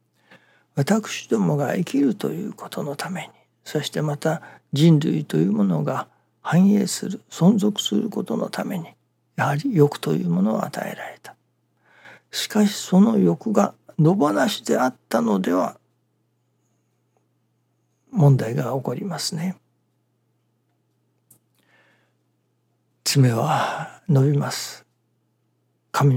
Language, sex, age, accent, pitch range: Japanese, male, 60-79, native, 140-195 Hz